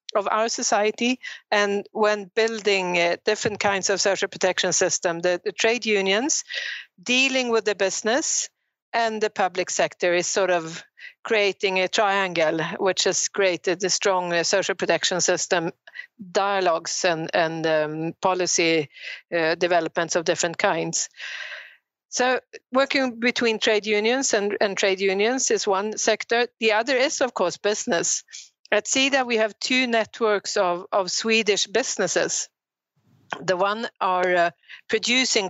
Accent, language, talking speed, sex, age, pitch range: native, Swedish, 140 wpm, female, 50-69, 185-230 Hz